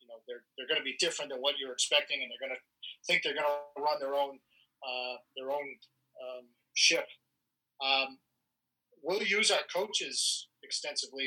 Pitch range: 130-155 Hz